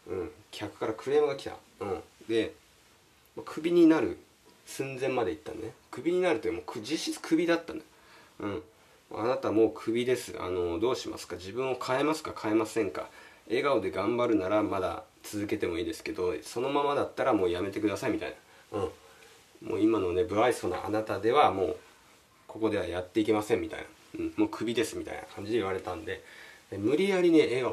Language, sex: Japanese, male